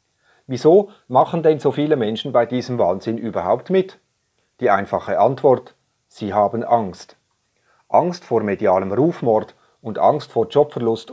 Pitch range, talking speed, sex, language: 120-155 Hz, 135 wpm, male, German